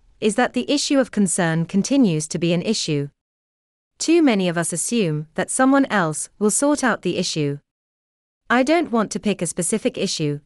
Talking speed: 185 wpm